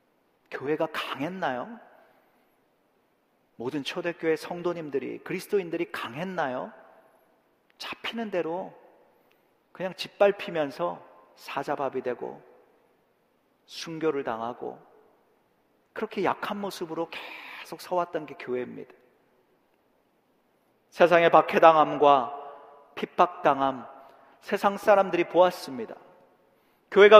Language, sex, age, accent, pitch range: Korean, male, 40-59, native, 160-215 Hz